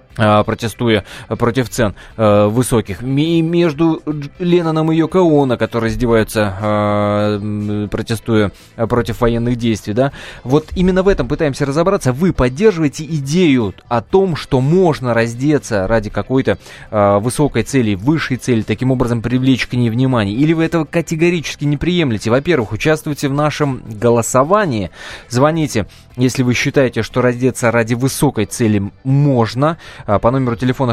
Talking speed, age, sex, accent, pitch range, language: 130 wpm, 20-39, male, native, 110-140 Hz, Russian